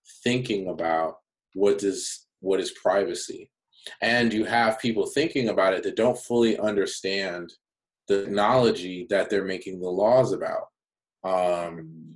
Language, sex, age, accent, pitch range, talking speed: English, male, 20-39, American, 90-110 Hz, 135 wpm